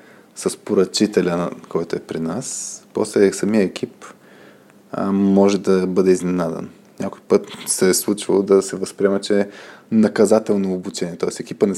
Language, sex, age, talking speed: Bulgarian, male, 20-39, 145 wpm